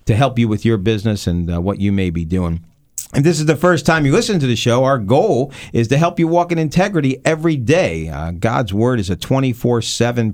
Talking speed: 240 wpm